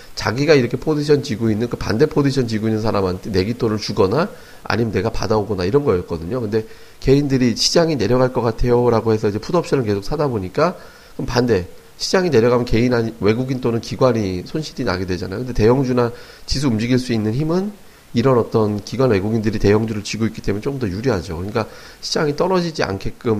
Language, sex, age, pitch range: Korean, male, 40-59, 100-130 Hz